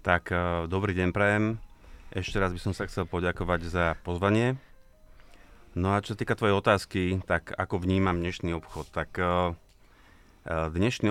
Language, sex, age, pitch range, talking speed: Slovak, male, 30-49, 85-95 Hz, 140 wpm